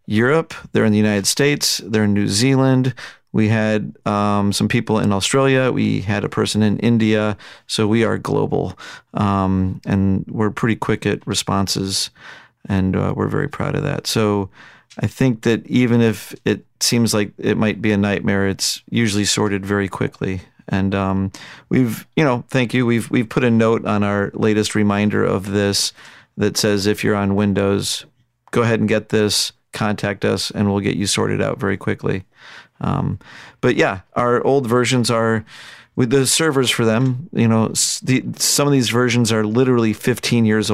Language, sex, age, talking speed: English, male, 40-59, 180 wpm